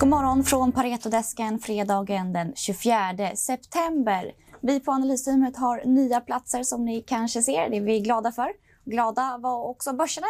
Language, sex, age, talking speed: Swedish, female, 20-39, 150 wpm